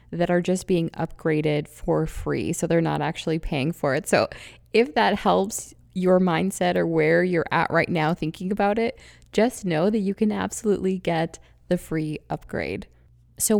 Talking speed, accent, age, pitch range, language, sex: 175 wpm, American, 20-39, 165-200 Hz, English, female